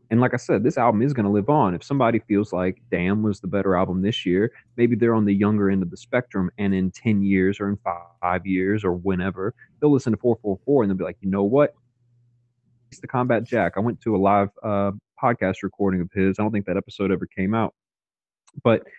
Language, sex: English, male